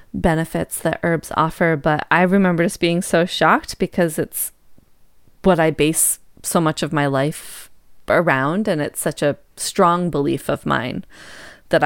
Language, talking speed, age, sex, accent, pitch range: English, 155 wpm, 20-39, female, American, 160-190 Hz